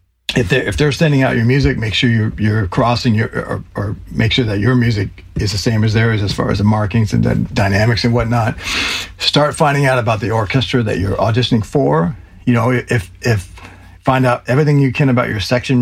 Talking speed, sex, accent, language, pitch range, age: 220 wpm, male, American, English, 110-135 Hz, 50-69